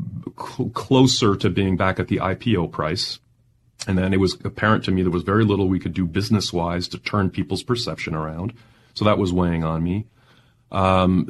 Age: 30-49